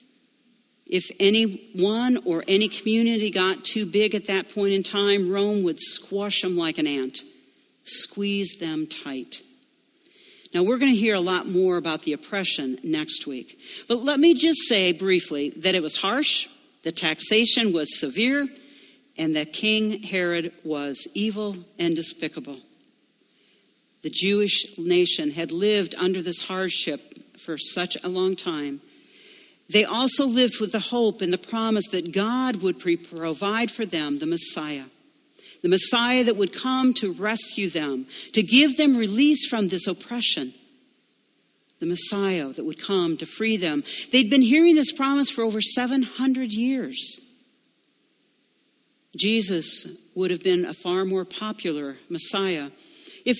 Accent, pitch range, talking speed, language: American, 180-265 Hz, 145 wpm, English